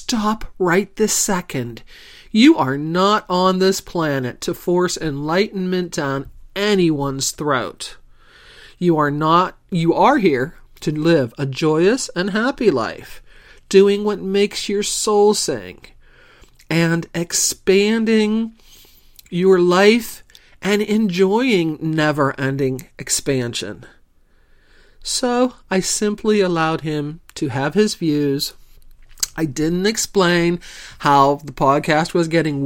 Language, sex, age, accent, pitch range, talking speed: English, male, 40-59, American, 150-205 Hz, 105 wpm